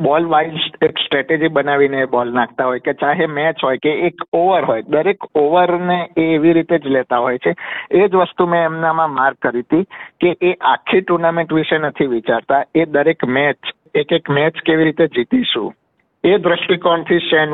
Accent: native